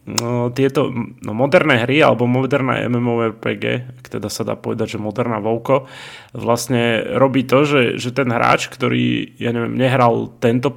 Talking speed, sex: 155 wpm, male